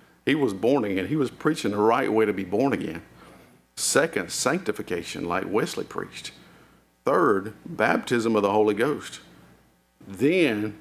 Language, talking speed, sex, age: English, 145 wpm, male, 50-69